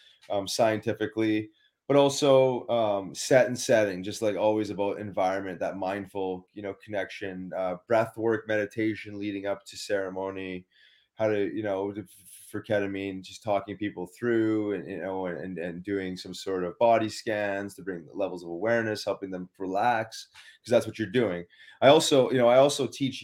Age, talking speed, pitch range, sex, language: 20-39, 175 wpm, 95-115 Hz, male, English